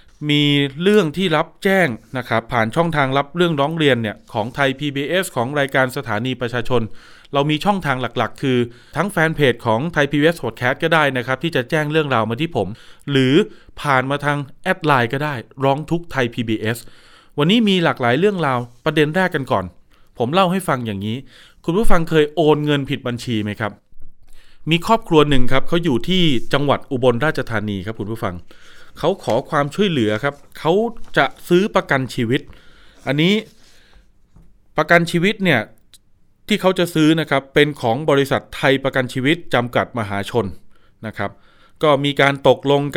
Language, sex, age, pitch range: Thai, male, 20-39, 120-155 Hz